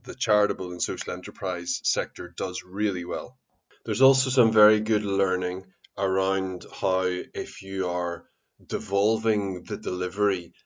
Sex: male